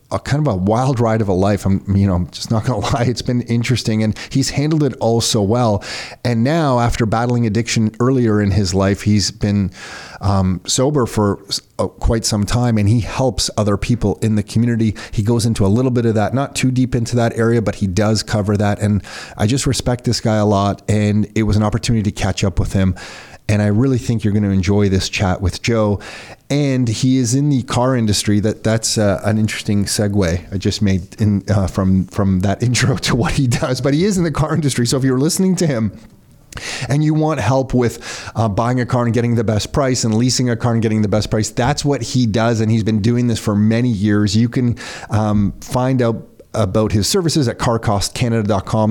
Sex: male